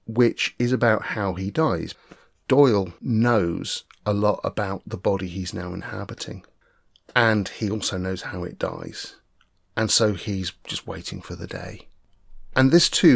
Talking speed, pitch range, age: 155 wpm, 95-120 Hz, 30-49